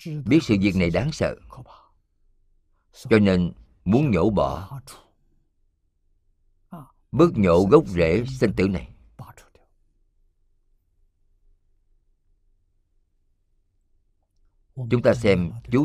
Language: Vietnamese